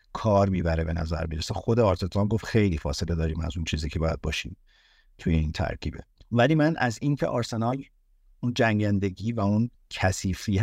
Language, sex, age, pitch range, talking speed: Persian, male, 50-69, 90-110 Hz, 170 wpm